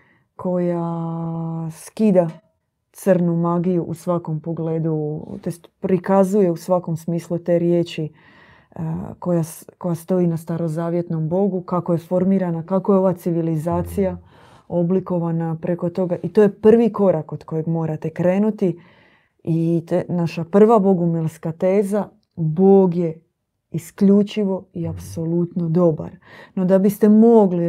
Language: Croatian